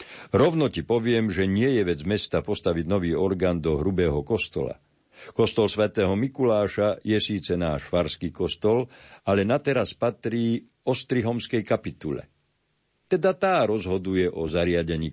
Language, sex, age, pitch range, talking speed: Slovak, male, 50-69, 80-110 Hz, 130 wpm